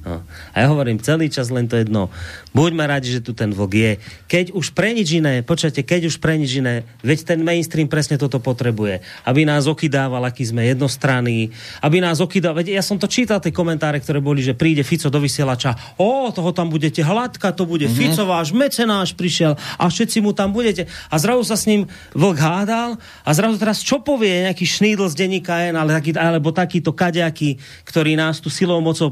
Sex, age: male, 30-49